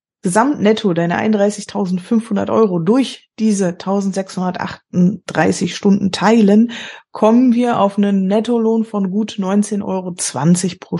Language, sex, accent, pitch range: German, female, German, 195-230 Hz